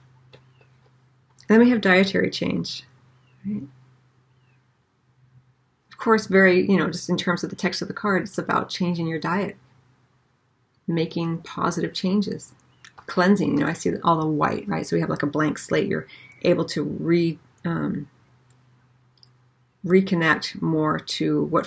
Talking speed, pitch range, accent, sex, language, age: 145 wpm, 130-180 Hz, American, female, English, 40-59